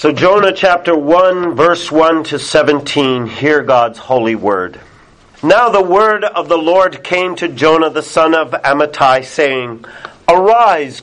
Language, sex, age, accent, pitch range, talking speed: English, male, 50-69, American, 145-175 Hz, 145 wpm